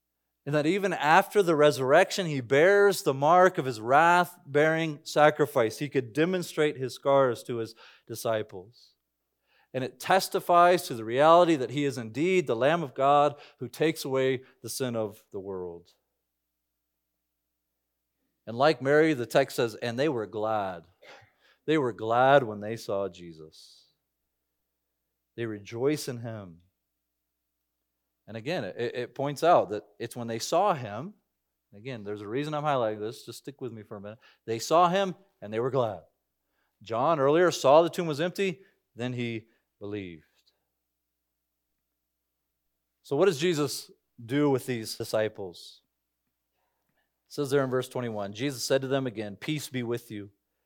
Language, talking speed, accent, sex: English, 155 wpm, American, male